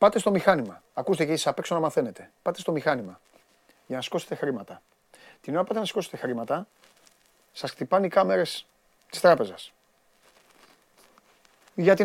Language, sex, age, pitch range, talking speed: Greek, male, 30-49, 150-210 Hz, 150 wpm